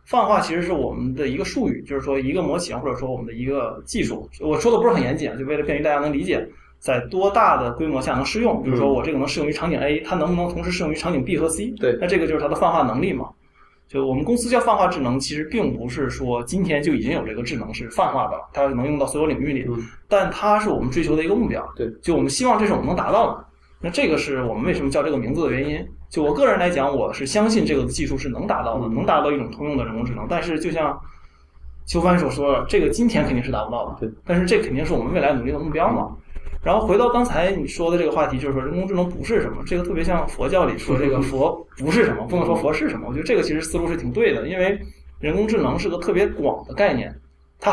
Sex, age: male, 20-39